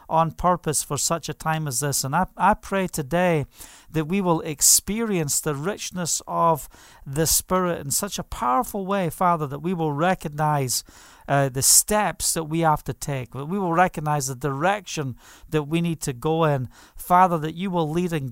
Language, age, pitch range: English, 50-69, 145-185 Hz